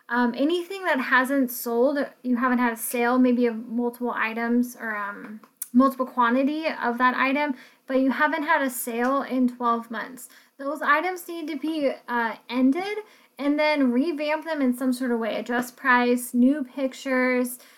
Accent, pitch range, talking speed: American, 240-270 Hz, 170 wpm